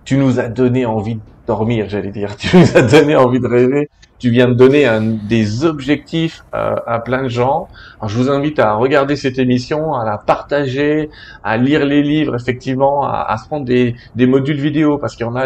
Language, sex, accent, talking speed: French, male, French, 215 wpm